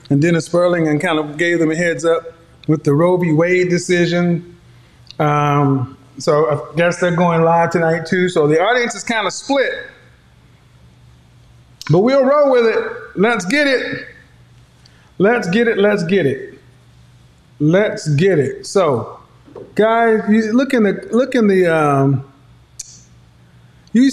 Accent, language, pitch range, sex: American, English, 130-195 Hz, male